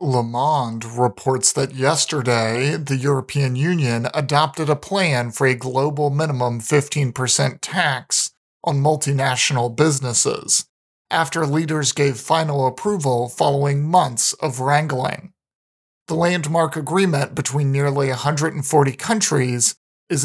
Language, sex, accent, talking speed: English, male, American, 110 wpm